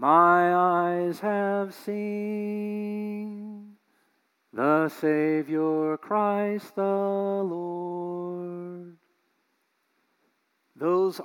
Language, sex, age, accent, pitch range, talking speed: English, male, 40-59, American, 160-205 Hz, 55 wpm